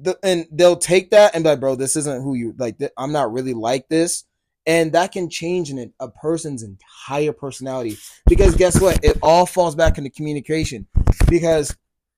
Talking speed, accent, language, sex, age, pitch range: 180 wpm, American, English, male, 20-39, 145-180 Hz